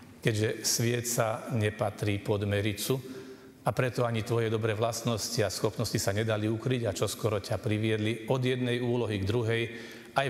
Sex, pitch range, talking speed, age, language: male, 110-130 Hz, 165 wpm, 40-59, Slovak